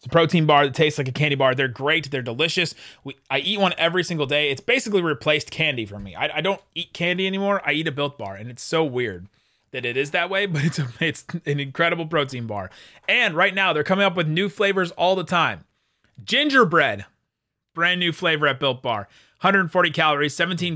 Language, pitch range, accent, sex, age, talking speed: English, 125-175 Hz, American, male, 30-49, 215 wpm